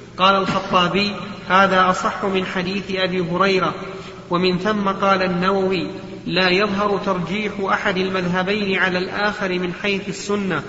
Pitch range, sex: 185-205 Hz, male